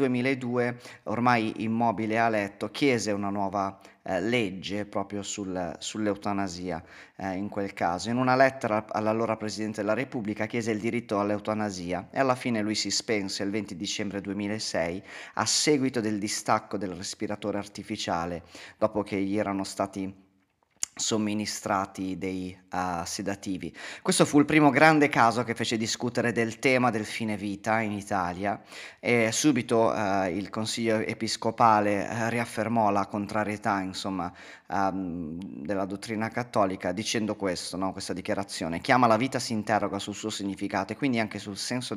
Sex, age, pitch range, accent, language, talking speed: male, 30-49, 100-115 Hz, native, Italian, 145 wpm